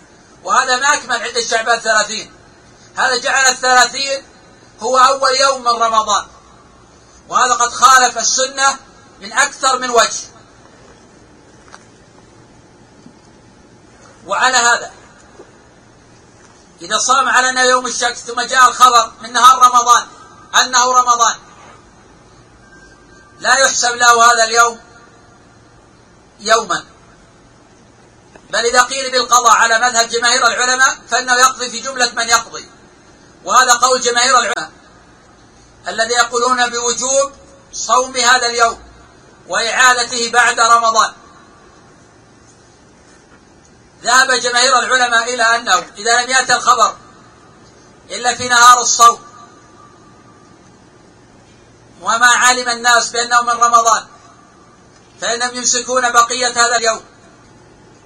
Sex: male